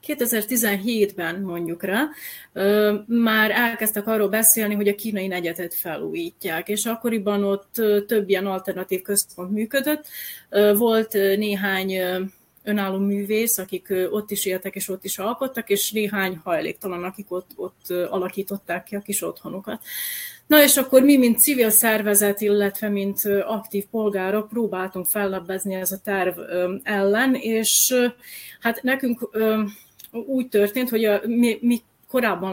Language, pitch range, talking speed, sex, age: Hungarian, 190-225 Hz, 125 wpm, female, 30-49